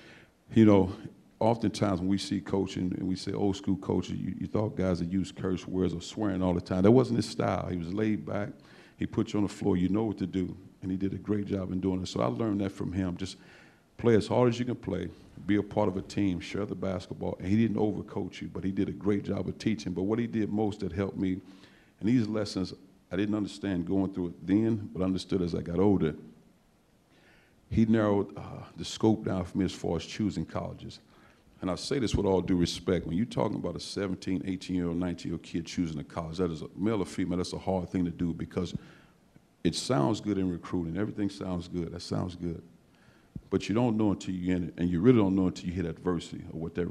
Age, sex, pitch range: 50-69, male, 90-105 Hz